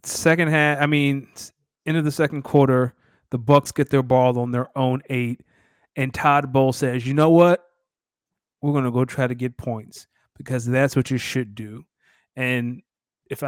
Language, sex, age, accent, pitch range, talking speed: English, male, 30-49, American, 120-145 Hz, 180 wpm